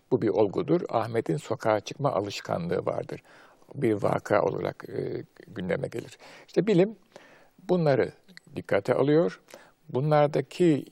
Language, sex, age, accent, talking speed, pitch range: Turkish, male, 60-79, native, 110 wpm, 105-160 Hz